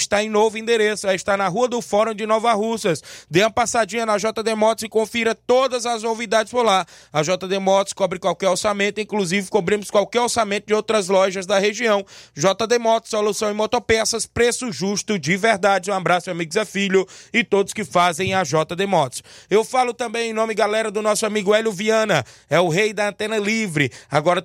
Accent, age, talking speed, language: Brazilian, 20-39, 195 wpm, Portuguese